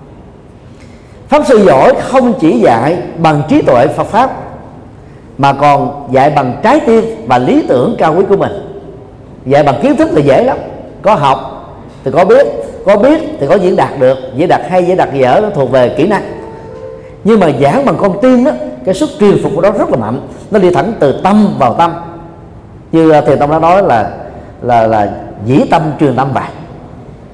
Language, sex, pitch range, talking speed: Vietnamese, male, 135-200 Hz, 200 wpm